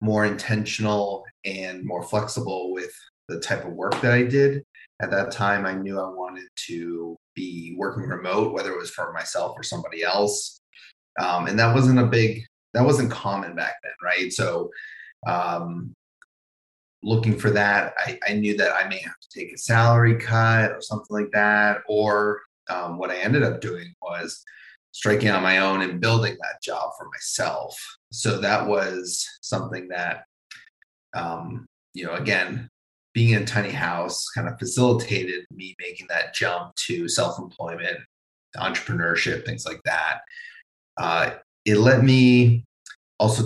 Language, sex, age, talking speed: English, male, 30-49, 160 wpm